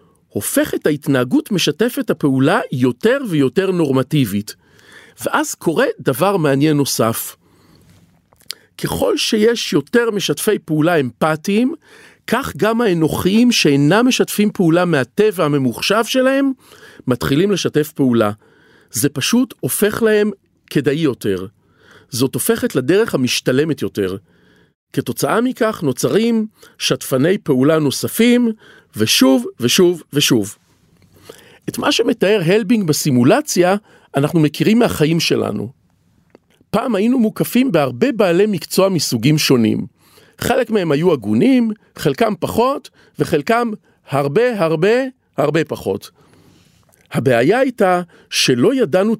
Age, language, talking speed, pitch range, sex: 40-59, Hebrew, 100 wpm, 140-225 Hz, male